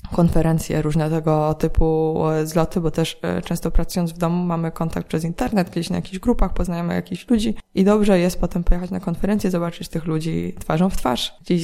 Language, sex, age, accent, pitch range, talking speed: Polish, female, 20-39, native, 170-210 Hz, 180 wpm